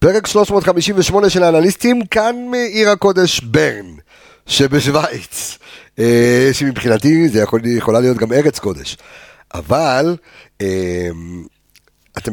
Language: Hebrew